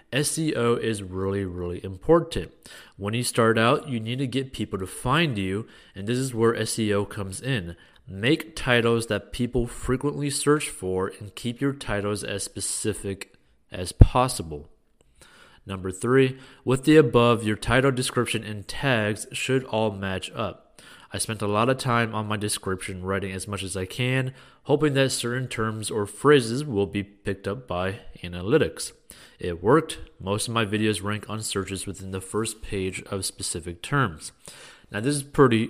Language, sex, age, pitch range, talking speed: English, male, 30-49, 100-130 Hz, 170 wpm